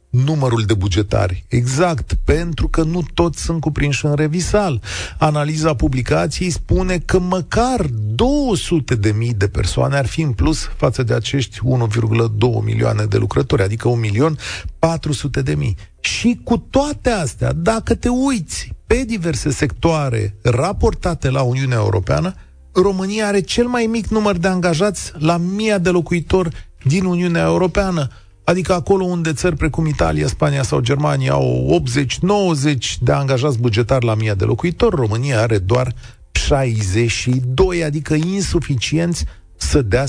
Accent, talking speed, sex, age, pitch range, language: native, 135 wpm, male, 40-59, 115-170 Hz, Romanian